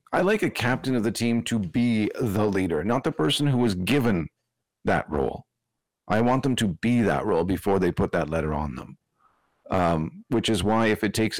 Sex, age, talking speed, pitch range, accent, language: male, 40-59, 210 wpm, 85-110 Hz, American, English